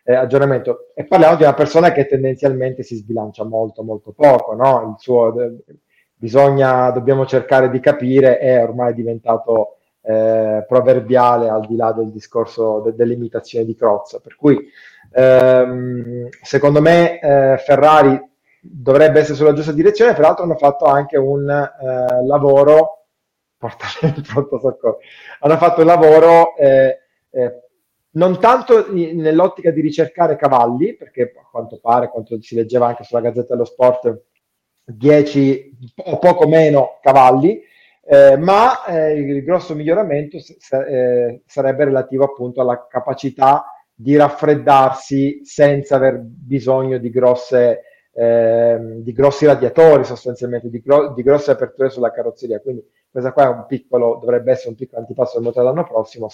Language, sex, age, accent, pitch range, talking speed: Italian, male, 30-49, native, 120-145 Hz, 150 wpm